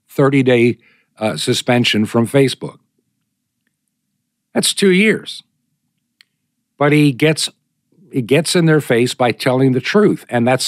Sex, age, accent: male, 60-79, American